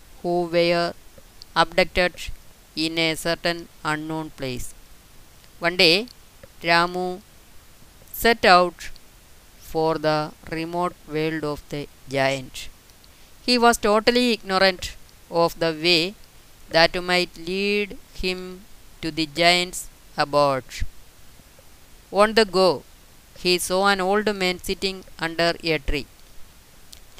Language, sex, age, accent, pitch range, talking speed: Malayalam, female, 20-39, native, 160-190 Hz, 100 wpm